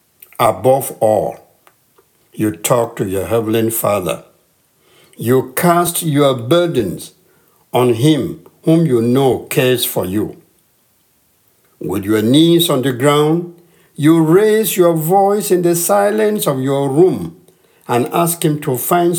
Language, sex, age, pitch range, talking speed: English, male, 60-79, 125-170 Hz, 130 wpm